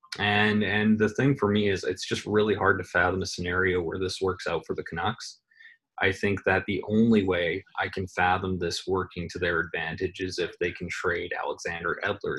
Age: 20-39